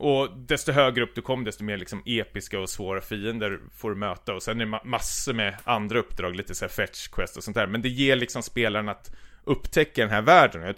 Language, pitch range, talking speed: Swedish, 105-130 Hz, 240 wpm